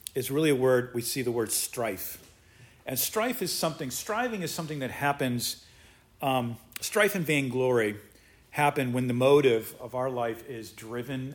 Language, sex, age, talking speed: English, male, 40-59, 165 wpm